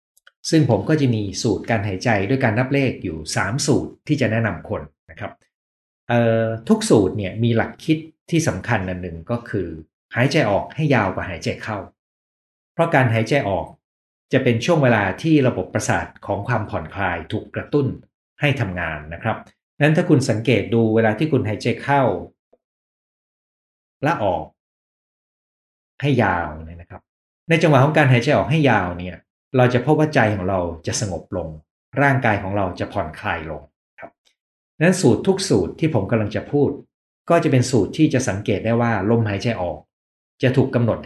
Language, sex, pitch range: Thai, male, 95-135 Hz